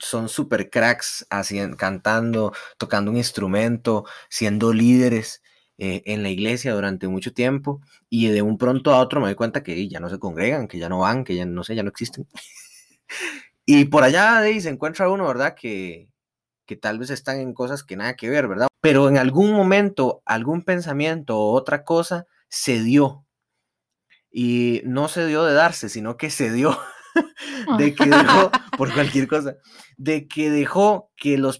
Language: Spanish